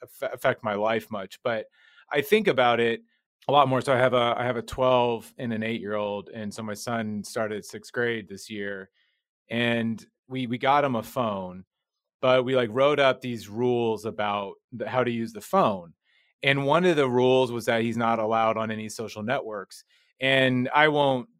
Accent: American